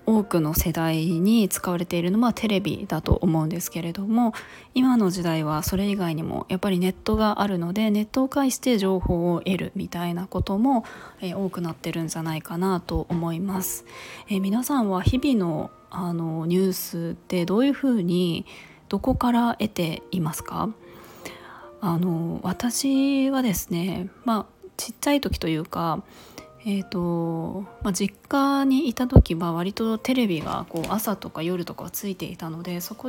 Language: Japanese